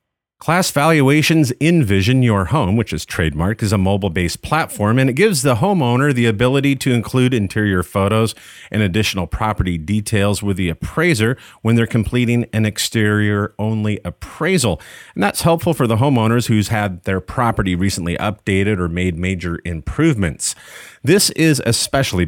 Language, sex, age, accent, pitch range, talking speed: English, male, 40-59, American, 95-125 Hz, 150 wpm